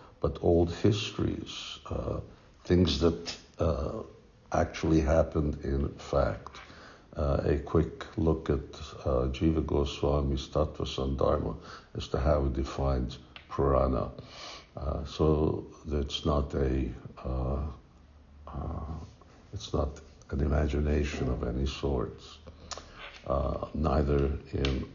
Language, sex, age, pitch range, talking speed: English, male, 60-79, 70-85 Hz, 105 wpm